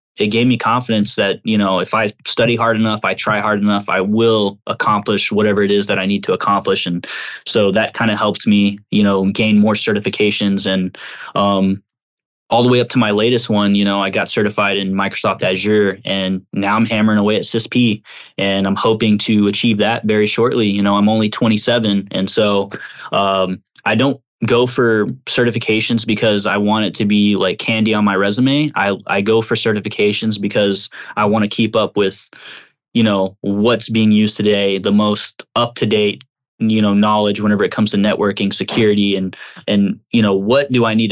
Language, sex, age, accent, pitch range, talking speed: English, male, 20-39, American, 100-110 Hz, 195 wpm